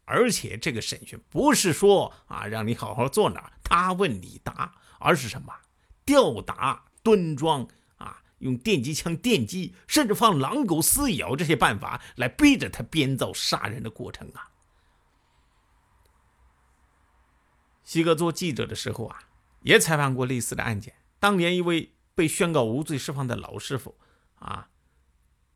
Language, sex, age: Chinese, male, 50-69